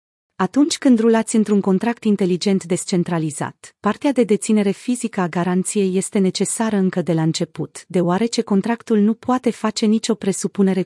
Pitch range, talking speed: 175-220 Hz, 145 wpm